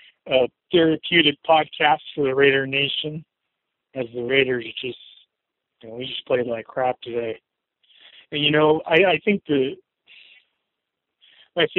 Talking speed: 135 wpm